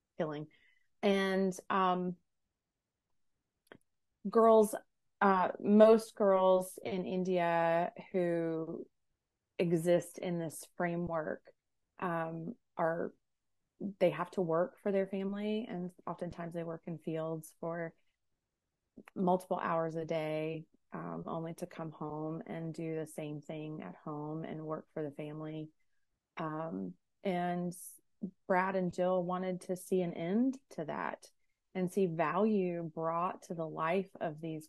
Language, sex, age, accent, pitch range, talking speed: English, female, 30-49, American, 165-195 Hz, 125 wpm